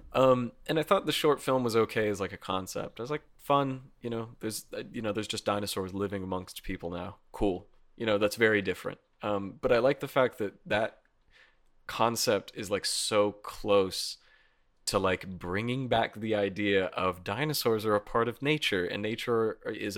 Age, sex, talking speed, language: 30-49, male, 190 wpm, English